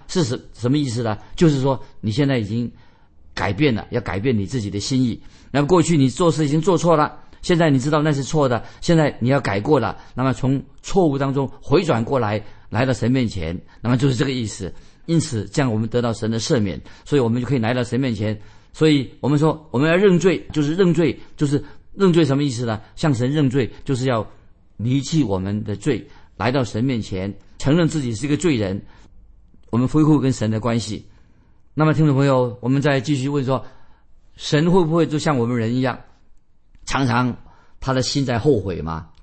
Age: 50-69